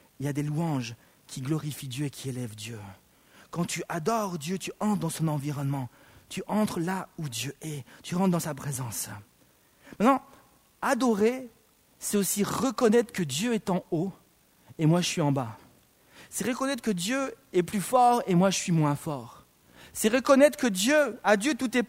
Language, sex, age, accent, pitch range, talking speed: French, male, 40-59, French, 170-260 Hz, 190 wpm